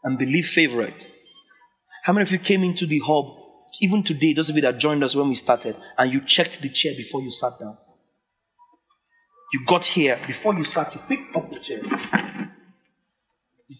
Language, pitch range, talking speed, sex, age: English, 160-265 Hz, 185 wpm, male, 30-49